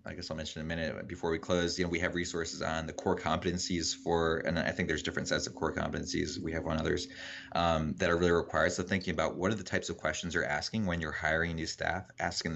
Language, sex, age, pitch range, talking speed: English, male, 20-39, 80-90 Hz, 265 wpm